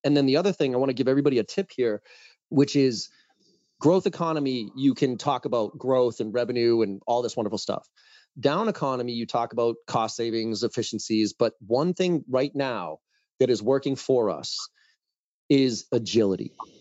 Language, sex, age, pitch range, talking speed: English, male, 30-49, 120-155 Hz, 175 wpm